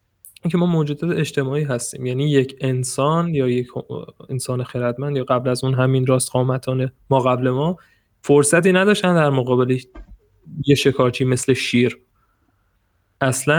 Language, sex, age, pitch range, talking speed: Persian, male, 20-39, 125-145 Hz, 135 wpm